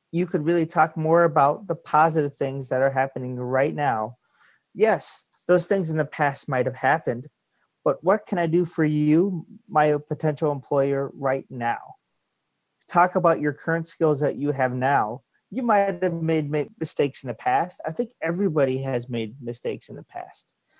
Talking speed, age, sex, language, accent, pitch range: 170 wpm, 30-49, male, English, American, 130-160 Hz